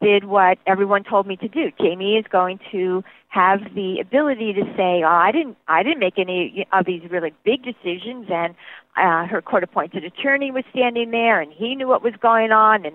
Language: English